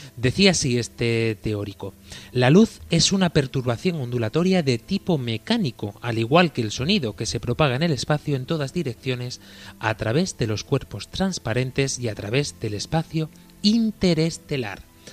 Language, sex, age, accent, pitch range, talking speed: Spanish, male, 30-49, Spanish, 115-155 Hz, 155 wpm